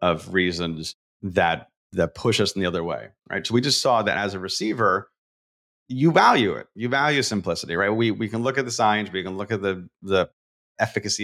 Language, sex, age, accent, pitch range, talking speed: English, male, 30-49, American, 90-115 Hz, 215 wpm